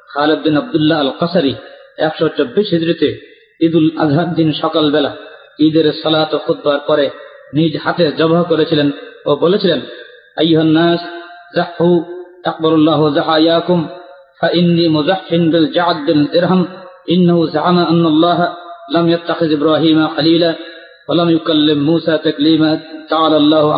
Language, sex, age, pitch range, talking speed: Bengali, male, 40-59, 155-170 Hz, 120 wpm